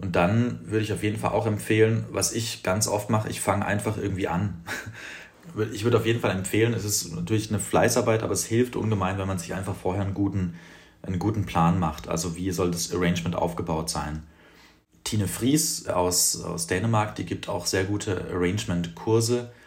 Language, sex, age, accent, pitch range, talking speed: German, male, 30-49, German, 90-110 Hz, 190 wpm